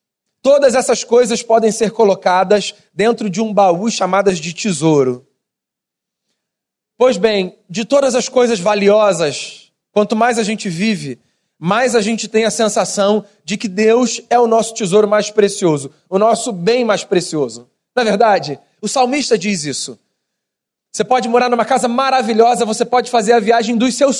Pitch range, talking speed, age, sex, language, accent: 190-235 Hz, 160 wpm, 30-49, male, Portuguese, Brazilian